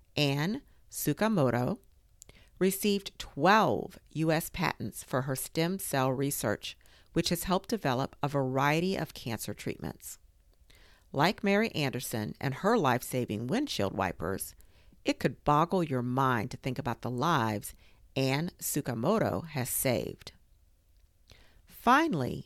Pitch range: 110-170 Hz